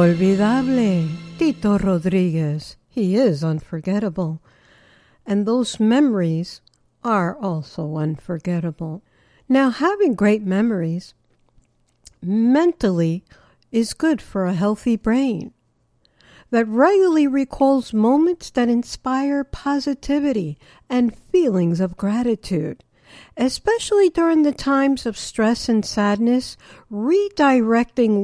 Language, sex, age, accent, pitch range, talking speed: English, female, 60-79, American, 185-265 Hz, 90 wpm